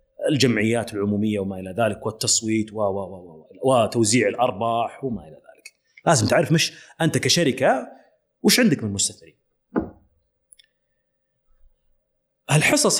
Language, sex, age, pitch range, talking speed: Arabic, male, 30-49, 115-185 Hz, 110 wpm